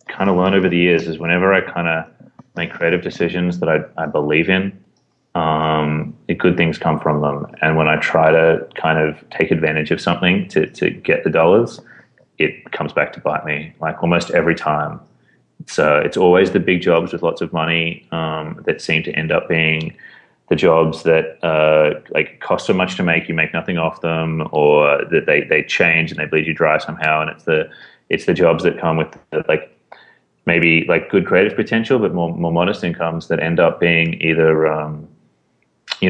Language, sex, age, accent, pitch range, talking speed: English, male, 30-49, Australian, 80-90 Hz, 200 wpm